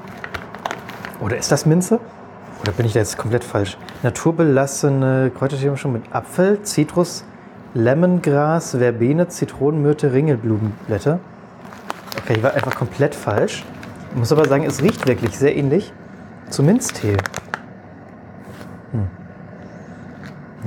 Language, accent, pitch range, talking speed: German, German, 110-145 Hz, 115 wpm